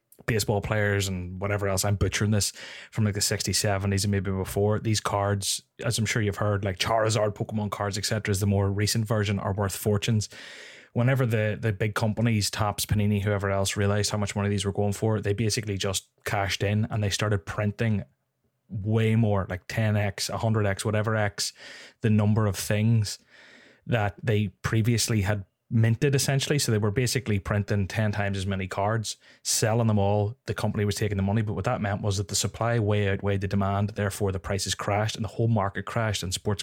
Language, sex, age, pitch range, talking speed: English, male, 20-39, 100-110 Hz, 200 wpm